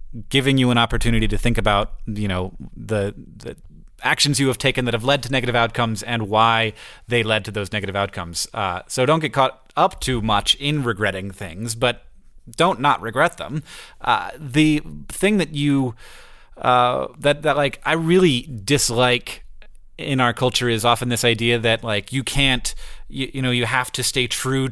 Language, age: English, 30-49